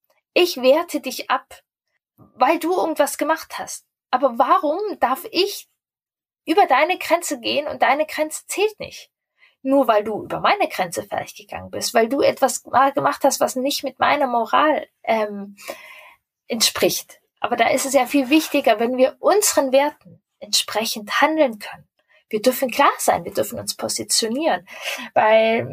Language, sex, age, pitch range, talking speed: German, female, 20-39, 255-310 Hz, 155 wpm